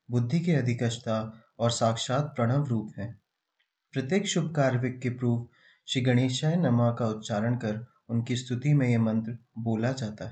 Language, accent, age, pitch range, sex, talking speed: Hindi, native, 30-49, 115-140 Hz, male, 150 wpm